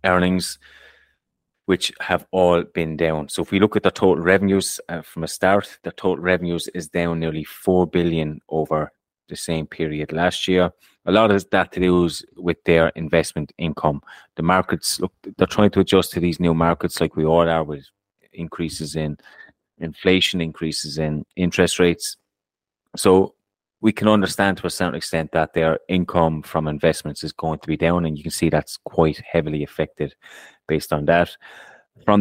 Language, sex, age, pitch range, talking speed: English, male, 30-49, 80-90 Hz, 180 wpm